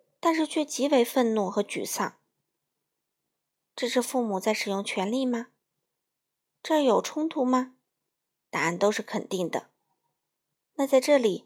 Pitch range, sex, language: 200-255 Hz, female, Chinese